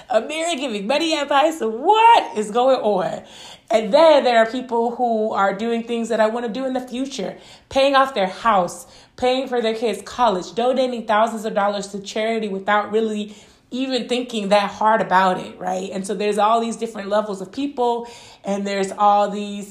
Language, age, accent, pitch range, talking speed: English, 20-39, American, 195-230 Hz, 195 wpm